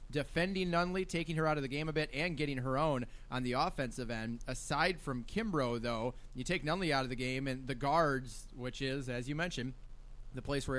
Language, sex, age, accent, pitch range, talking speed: English, male, 20-39, American, 130-155 Hz, 220 wpm